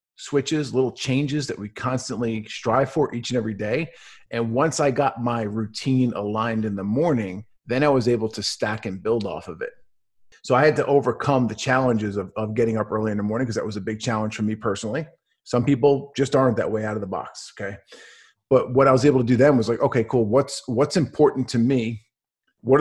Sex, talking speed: male, 225 wpm